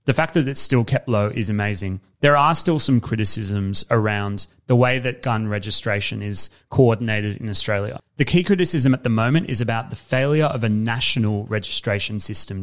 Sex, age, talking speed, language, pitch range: male, 30-49, 185 wpm, English, 105-125 Hz